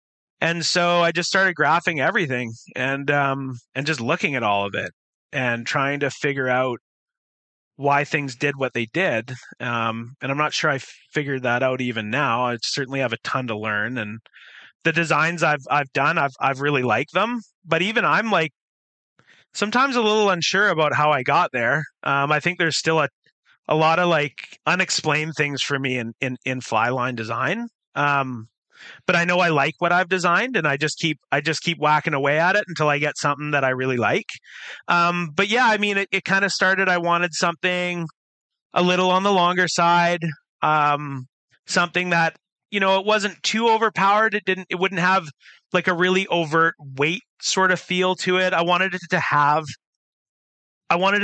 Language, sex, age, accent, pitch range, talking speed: English, male, 30-49, American, 135-185 Hz, 195 wpm